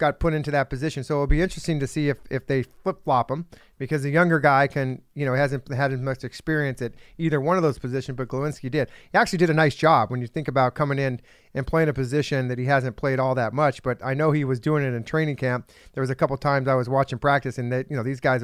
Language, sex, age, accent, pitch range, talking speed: English, male, 40-59, American, 130-155 Hz, 285 wpm